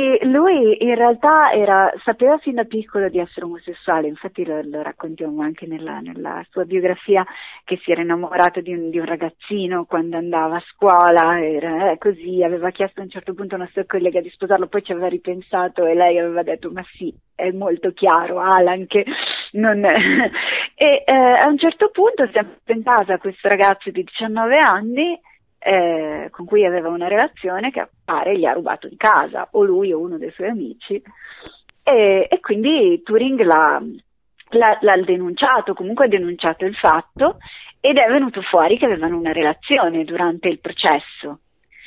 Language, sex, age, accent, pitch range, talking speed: Italian, female, 30-49, native, 175-240 Hz, 170 wpm